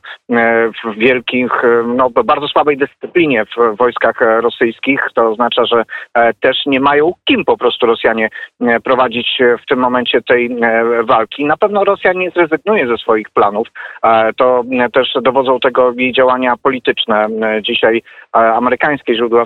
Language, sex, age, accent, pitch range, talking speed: Polish, male, 40-59, native, 115-145 Hz, 130 wpm